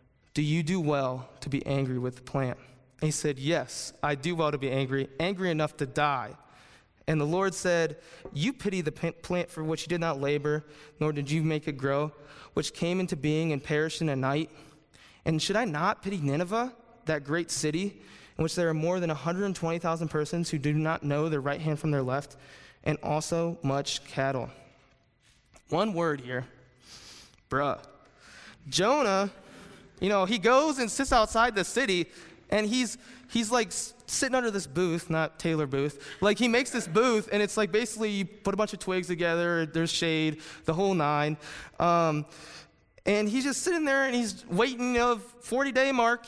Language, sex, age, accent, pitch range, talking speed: English, male, 20-39, American, 150-210 Hz, 185 wpm